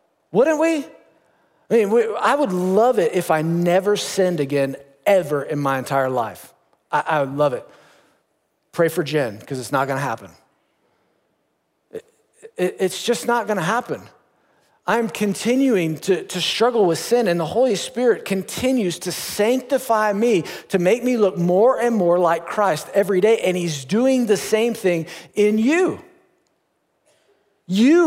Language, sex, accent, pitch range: English, male, American, 175-235 Hz